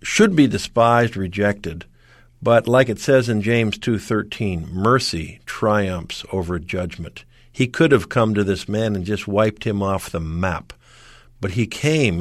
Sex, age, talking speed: male, 50-69, 155 wpm